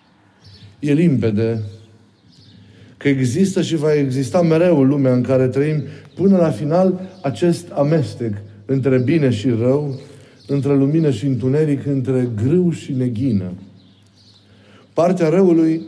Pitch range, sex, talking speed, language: 120-155 Hz, male, 115 wpm, Romanian